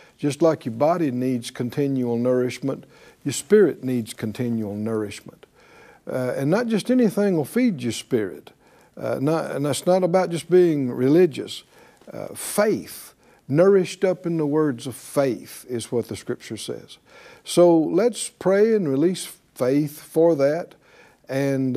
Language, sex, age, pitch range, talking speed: English, male, 60-79, 125-165 Hz, 145 wpm